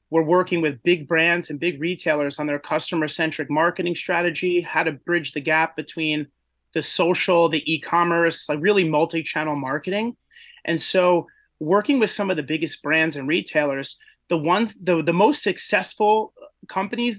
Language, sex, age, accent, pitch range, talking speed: English, male, 30-49, American, 155-185 Hz, 155 wpm